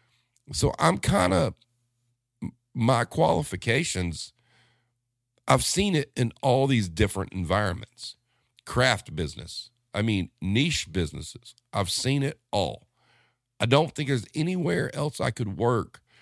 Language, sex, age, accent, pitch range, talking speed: English, male, 50-69, American, 95-120 Hz, 120 wpm